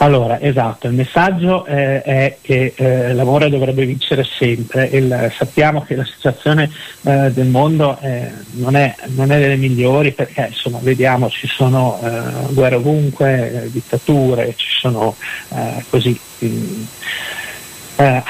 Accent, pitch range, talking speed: native, 120-140 Hz, 130 wpm